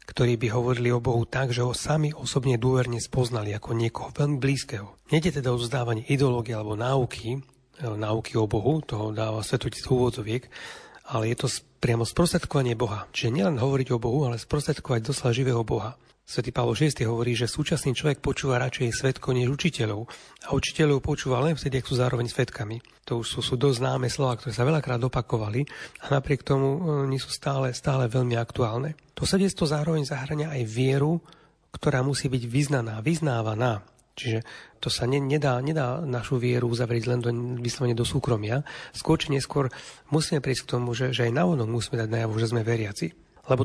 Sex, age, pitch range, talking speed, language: male, 40-59, 120-145 Hz, 180 wpm, Slovak